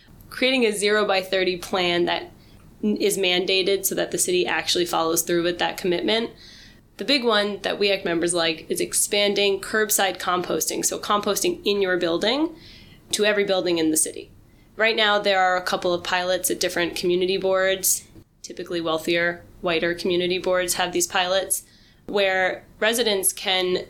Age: 20-39